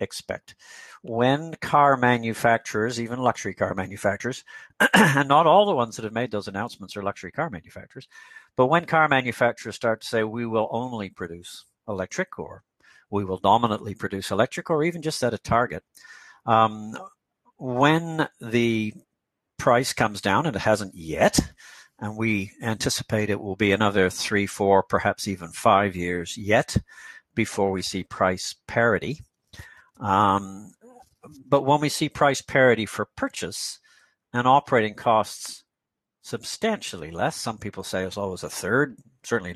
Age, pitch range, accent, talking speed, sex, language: 60-79, 100-130 Hz, American, 145 wpm, male, English